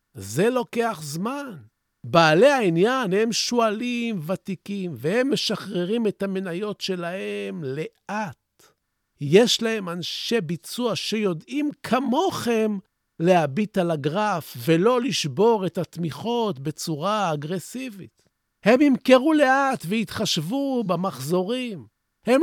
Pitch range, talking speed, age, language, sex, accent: 165-230 Hz, 95 wpm, 50-69, Hebrew, male, native